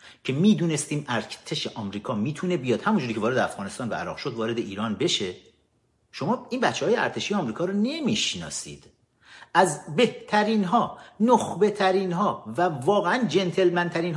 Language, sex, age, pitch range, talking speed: Persian, male, 50-69, 145-205 Hz, 145 wpm